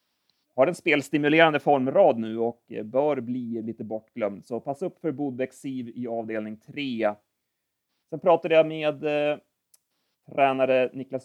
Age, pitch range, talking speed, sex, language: 30-49, 115-145 Hz, 135 wpm, male, Swedish